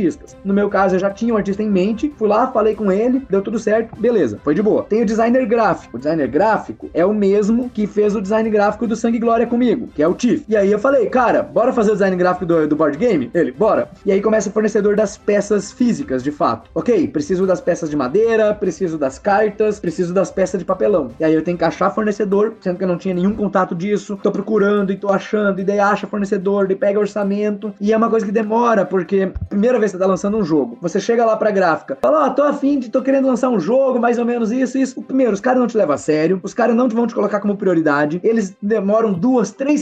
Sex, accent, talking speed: male, Brazilian, 255 wpm